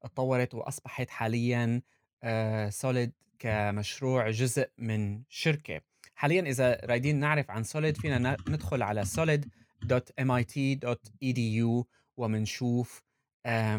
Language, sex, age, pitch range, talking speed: Arabic, male, 20-39, 115-145 Hz, 85 wpm